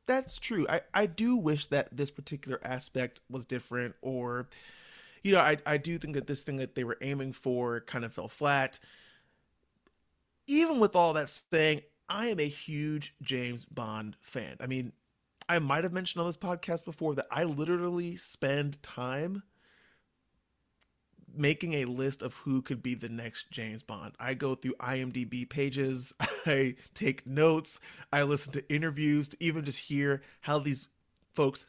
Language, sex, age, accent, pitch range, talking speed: English, male, 30-49, American, 125-160 Hz, 165 wpm